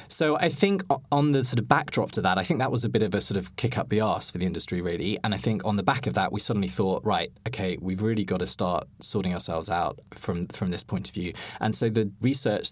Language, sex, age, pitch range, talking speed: English, male, 20-39, 100-130 Hz, 280 wpm